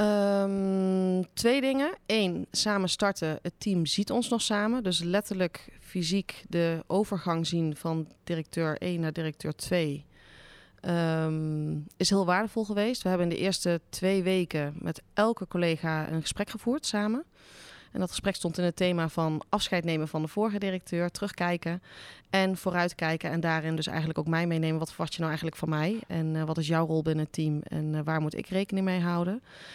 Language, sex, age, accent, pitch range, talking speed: Dutch, female, 30-49, Dutch, 160-195 Hz, 185 wpm